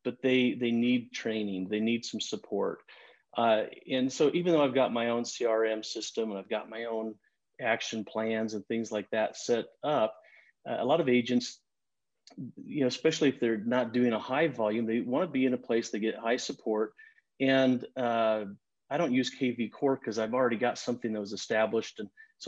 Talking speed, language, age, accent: 205 wpm, English, 40-59, American